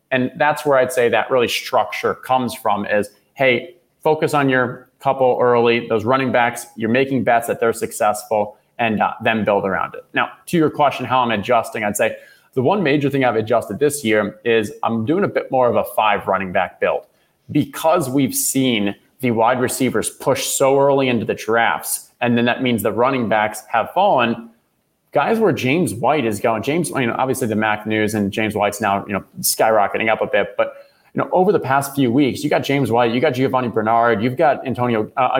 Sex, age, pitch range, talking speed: male, 30-49, 115-145 Hz, 210 wpm